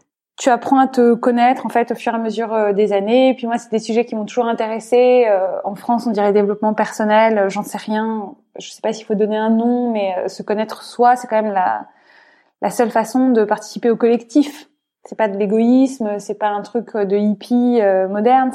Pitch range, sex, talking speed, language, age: 210-245 Hz, female, 225 wpm, French, 20-39